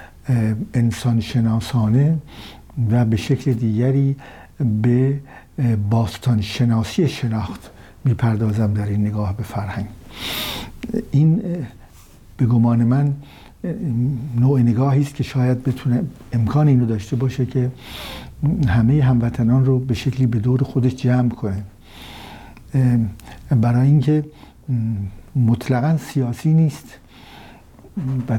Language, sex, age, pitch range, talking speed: Persian, male, 60-79, 115-140 Hz, 100 wpm